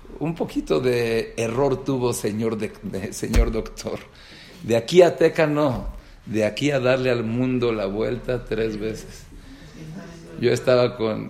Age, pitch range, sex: 50-69, 110-135 Hz, male